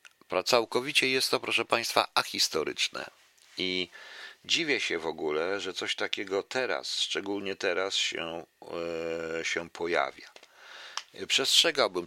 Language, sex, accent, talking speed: Polish, male, native, 105 wpm